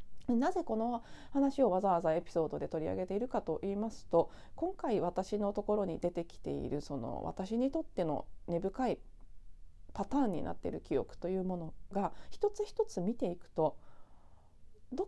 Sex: female